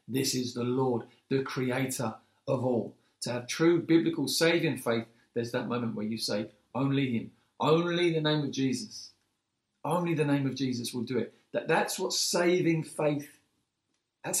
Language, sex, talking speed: English, male, 170 wpm